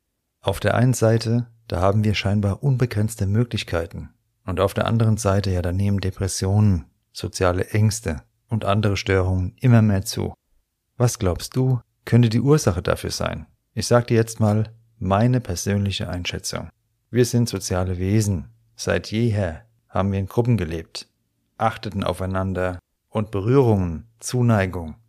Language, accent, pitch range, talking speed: German, German, 95-115 Hz, 140 wpm